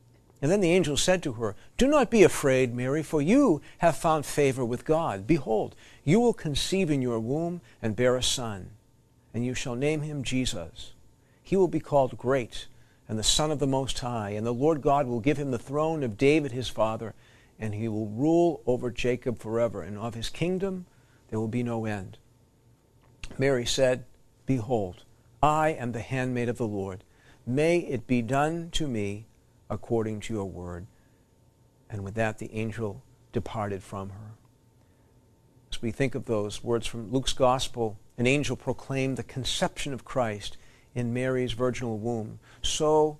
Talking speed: 175 wpm